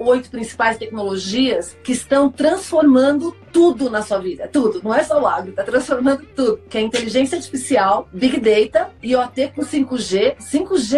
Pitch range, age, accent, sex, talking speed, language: 215-275 Hz, 40-59, Brazilian, female, 160 wpm, Portuguese